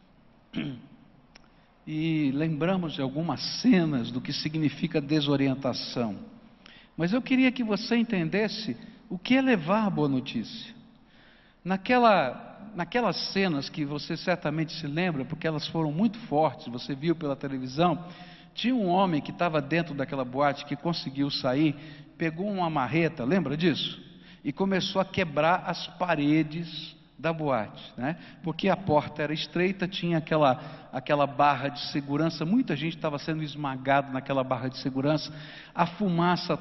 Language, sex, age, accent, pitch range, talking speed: English, male, 60-79, Brazilian, 150-205 Hz, 140 wpm